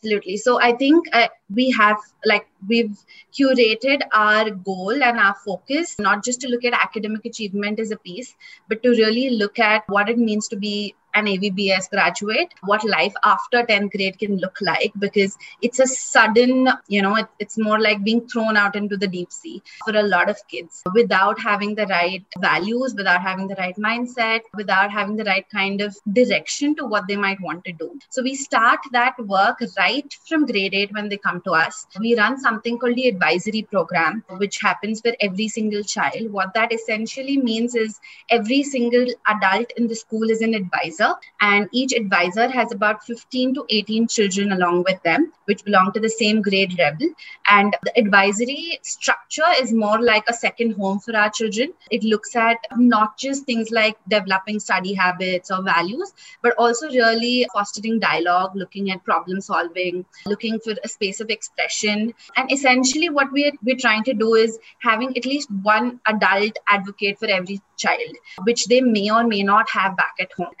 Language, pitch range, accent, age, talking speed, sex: English, 200-240 Hz, Indian, 20-39, 185 wpm, female